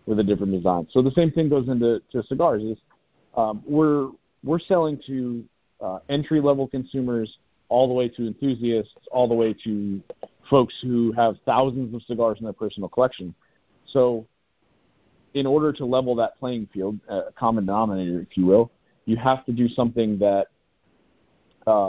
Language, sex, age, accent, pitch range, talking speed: English, male, 40-59, American, 105-130 Hz, 170 wpm